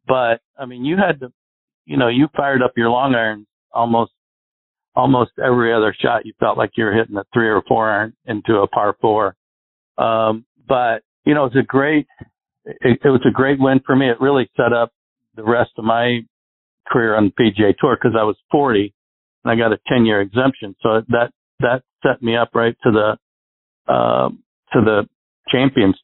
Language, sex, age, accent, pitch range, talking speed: English, male, 60-79, American, 110-130 Hz, 200 wpm